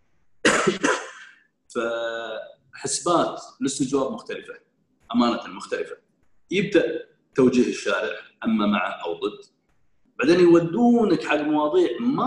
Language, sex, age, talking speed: Arabic, male, 30-49, 85 wpm